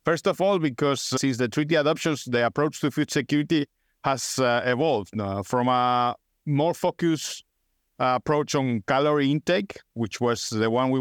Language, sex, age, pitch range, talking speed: English, male, 50-69, 120-150 Hz, 170 wpm